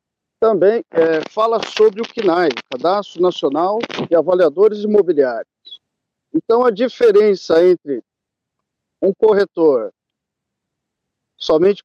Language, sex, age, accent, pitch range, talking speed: Portuguese, male, 50-69, Brazilian, 165-230 Hz, 90 wpm